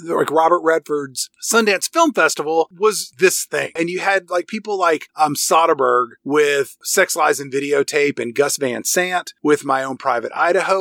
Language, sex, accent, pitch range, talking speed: English, male, American, 155-215 Hz, 170 wpm